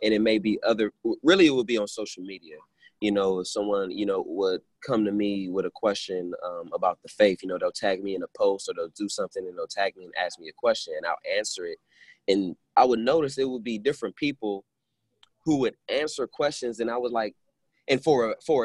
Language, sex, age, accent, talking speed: English, male, 20-39, American, 240 wpm